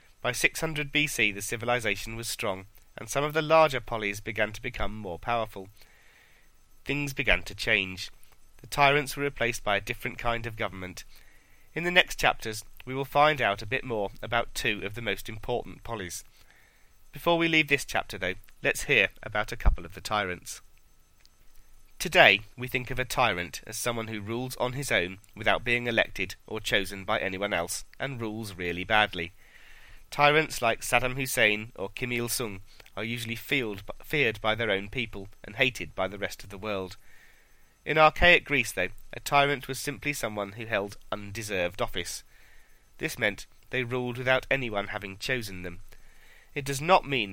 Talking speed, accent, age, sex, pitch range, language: 175 wpm, British, 30-49, male, 100-125 Hz, English